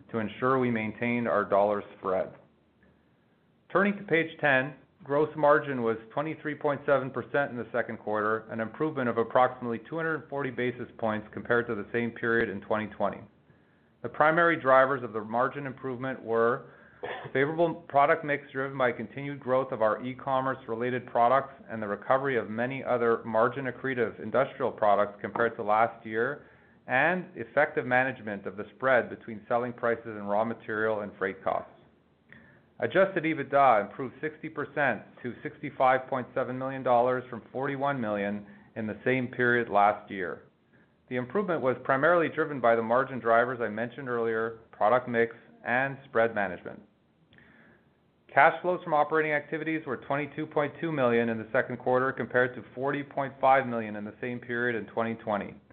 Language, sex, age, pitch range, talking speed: English, male, 30-49, 115-140 Hz, 145 wpm